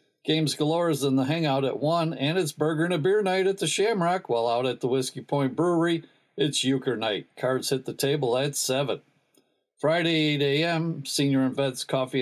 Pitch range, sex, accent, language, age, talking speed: 135-165 Hz, male, American, English, 60-79, 200 wpm